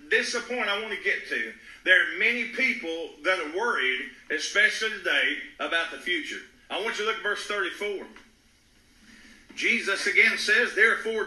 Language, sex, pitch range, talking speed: English, male, 220-295 Hz, 165 wpm